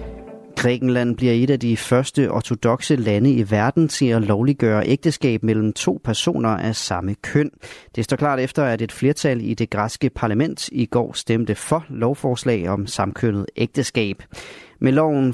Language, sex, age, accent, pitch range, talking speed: Danish, male, 30-49, native, 110-135 Hz, 160 wpm